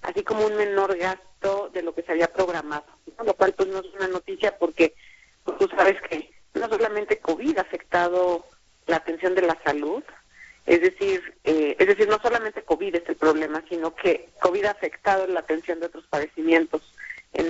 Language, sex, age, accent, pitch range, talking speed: Spanish, female, 40-59, Mexican, 165-205 Hz, 190 wpm